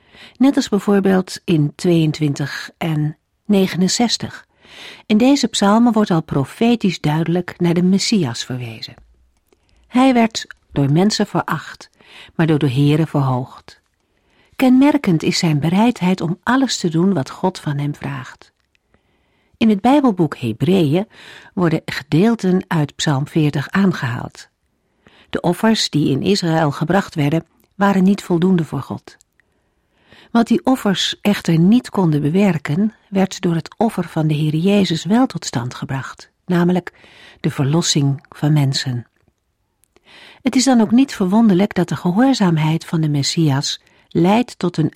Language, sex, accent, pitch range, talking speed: Dutch, female, Dutch, 150-200 Hz, 135 wpm